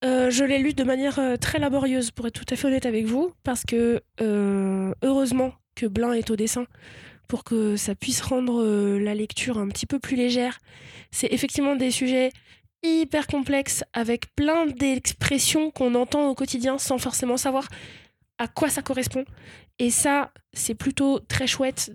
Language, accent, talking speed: French, French, 175 wpm